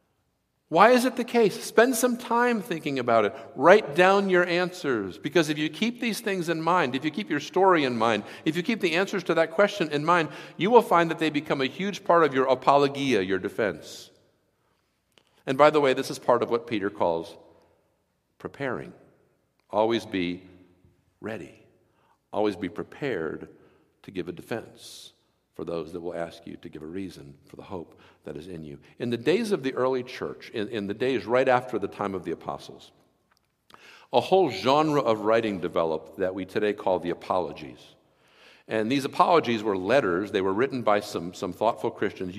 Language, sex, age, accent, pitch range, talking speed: English, male, 50-69, American, 120-180 Hz, 190 wpm